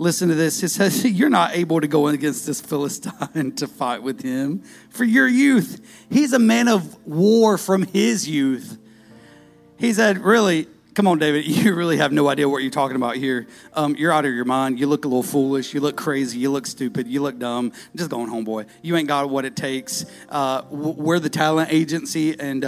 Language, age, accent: English, 30-49, American